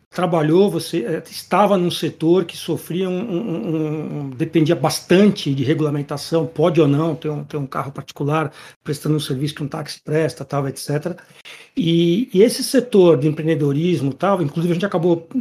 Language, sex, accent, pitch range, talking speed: Portuguese, male, Brazilian, 155-185 Hz, 170 wpm